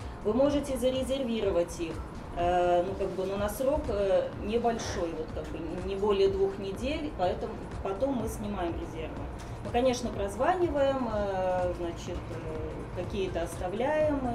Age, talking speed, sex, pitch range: 20-39, 120 wpm, female, 185-240 Hz